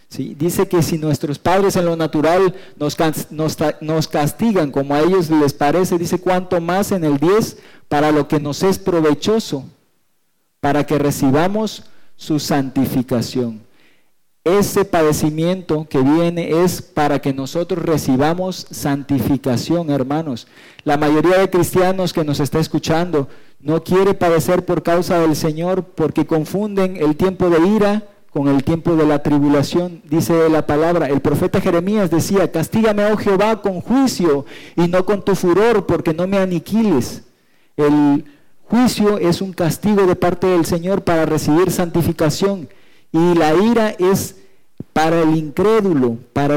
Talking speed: 145 wpm